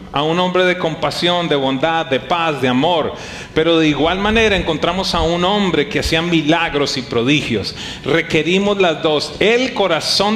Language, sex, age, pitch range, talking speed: English, male, 40-59, 150-195 Hz, 170 wpm